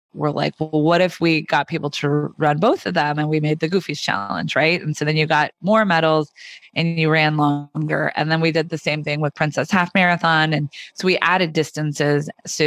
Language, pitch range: English, 155-185 Hz